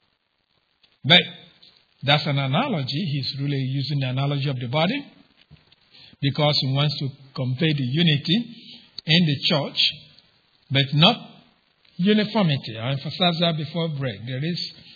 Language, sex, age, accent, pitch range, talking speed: English, male, 50-69, Nigerian, 140-175 Hz, 130 wpm